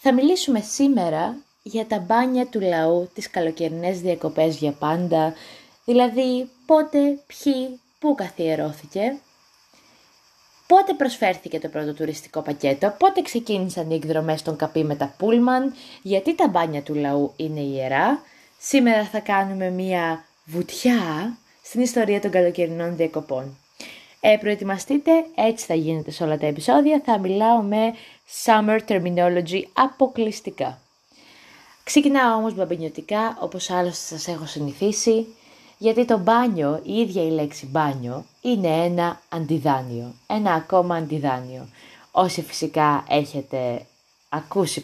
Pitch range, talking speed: 155-230 Hz, 120 wpm